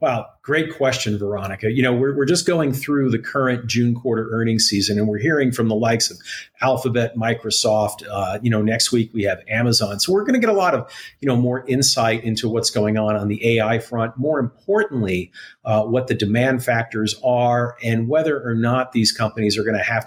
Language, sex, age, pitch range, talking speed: English, male, 50-69, 110-130 Hz, 215 wpm